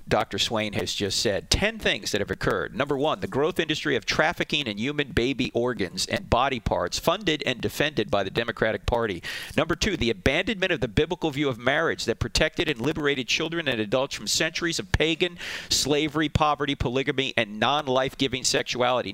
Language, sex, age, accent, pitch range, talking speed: English, male, 40-59, American, 125-165 Hz, 180 wpm